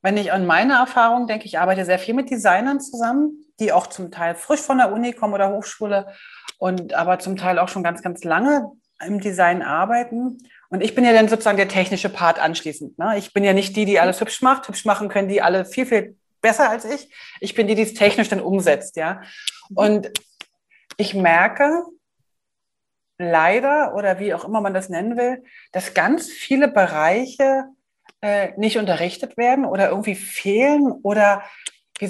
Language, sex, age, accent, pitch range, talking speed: German, female, 30-49, German, 190-245 Hz, 185 wpm